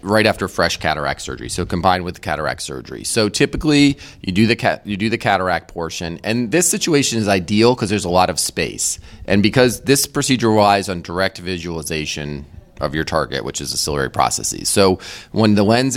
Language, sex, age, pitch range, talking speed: English, male, 30-49, 80-110 Hz, 200 wpm